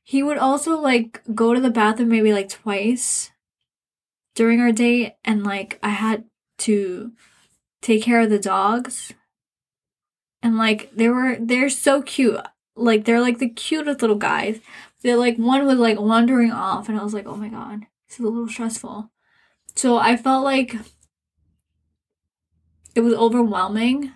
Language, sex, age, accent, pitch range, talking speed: English, female, 10-29, American, 205-235 Hz, 160 wpm